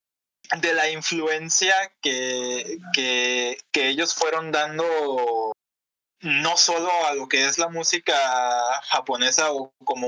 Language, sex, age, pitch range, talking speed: Spanish, male, 20-39, 135-175 Hz, 120 wpm